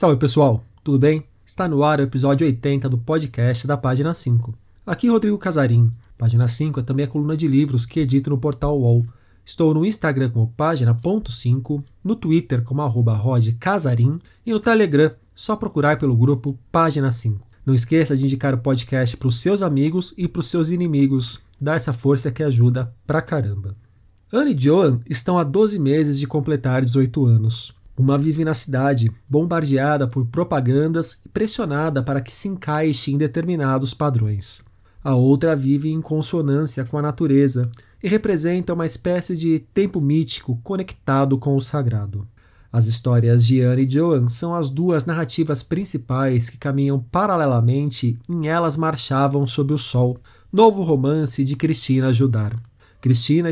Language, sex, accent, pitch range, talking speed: Portuguese, male, Brazilian, 125-160 Hz, 160 wpm